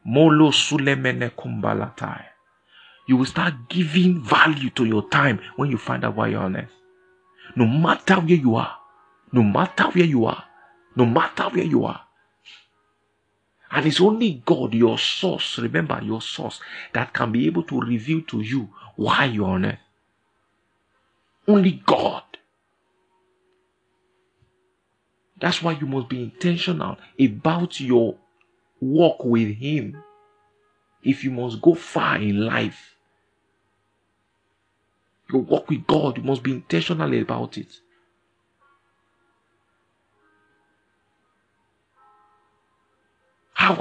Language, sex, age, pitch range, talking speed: English, male, 50-69, 105-155 Hz, 115 wpm